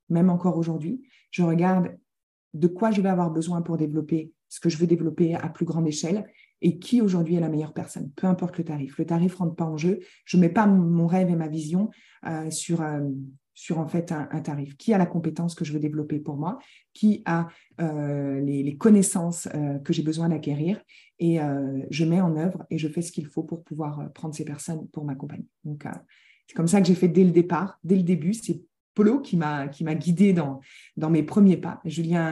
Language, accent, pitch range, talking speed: French, French, 155-185 Hz, 225 wpm